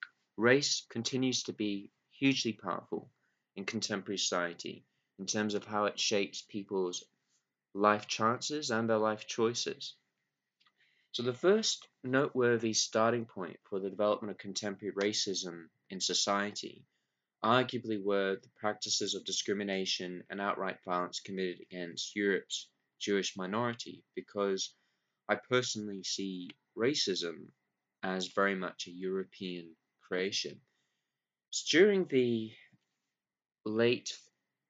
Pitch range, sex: 95-120 Hz, male